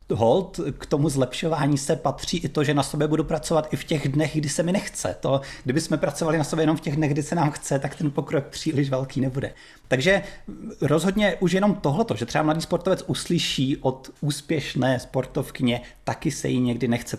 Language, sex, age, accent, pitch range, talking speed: Czech, male, 30-49, native, 125-150 Hz, 205 wpm